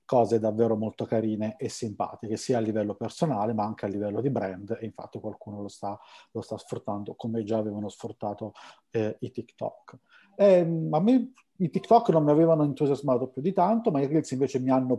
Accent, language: native, Italian